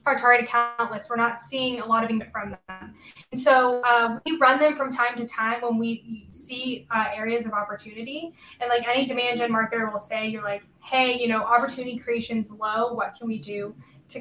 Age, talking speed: 10-29, 205 wpm